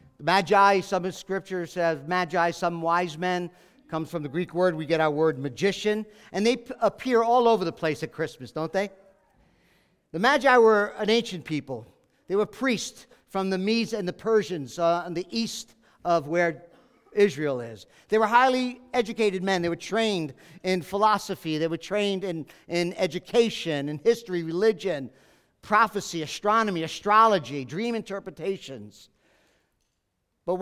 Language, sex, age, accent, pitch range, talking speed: English, male, 50-69, American, 150-200 Hz, 155 wpm